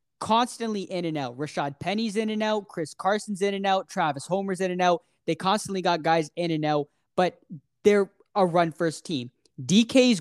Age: 10-29